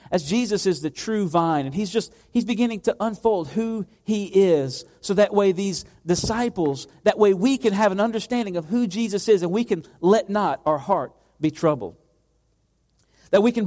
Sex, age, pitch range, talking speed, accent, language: male, 40-59, 155-235 Hz, 195 wpm, American, English